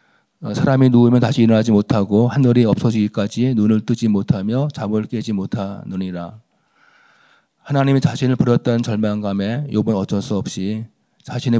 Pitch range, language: 110-135 Hz, Korean